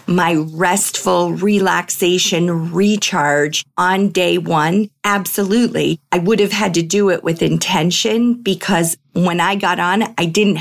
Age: 40-59